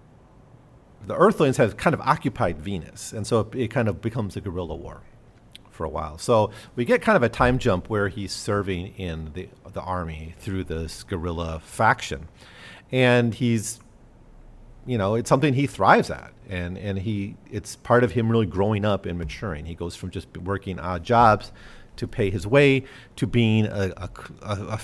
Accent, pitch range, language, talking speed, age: American, 95-120 Hz, English, 185 wpm, 40-59